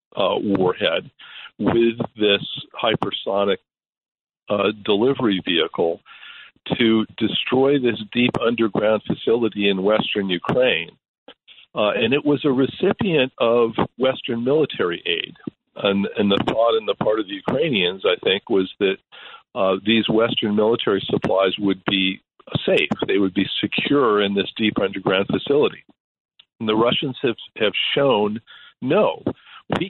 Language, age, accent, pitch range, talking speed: English, 50-69, American, 100-130 Hz, 130 wpm